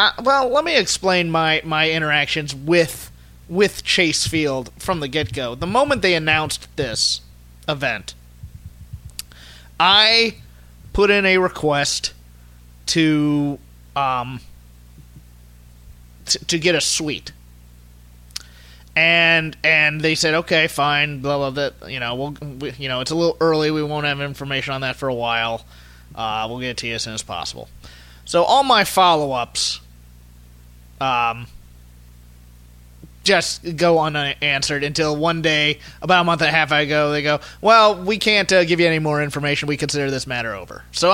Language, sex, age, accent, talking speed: English, male, 30-49, American, 155 wpm